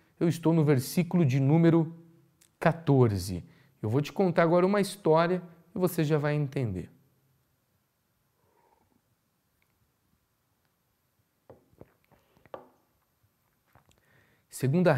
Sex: male